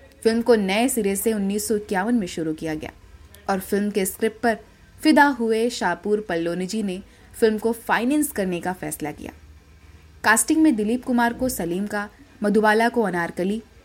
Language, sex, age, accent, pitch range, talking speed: Hindi, female, 20-39, native, 180-230 Hz, 160 wpm